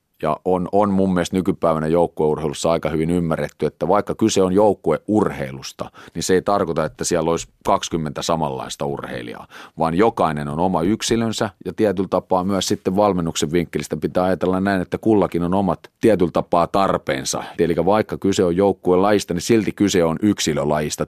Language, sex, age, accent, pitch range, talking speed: Finnish, male, 30-49, native, 80-105 Hz, 160 wpm